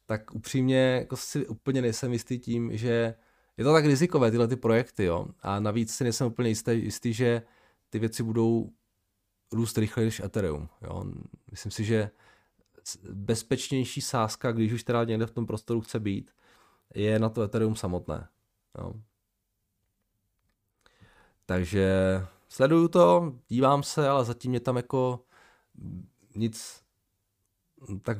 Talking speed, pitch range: 135 wpm, 95-120 Hz